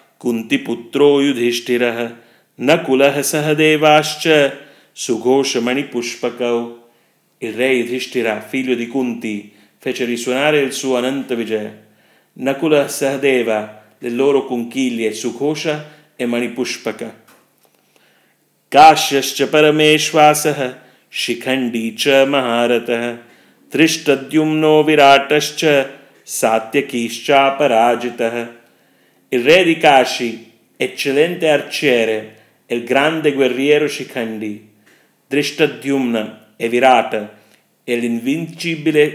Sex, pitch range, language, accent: male, 120-145 Hz, Italian, Indian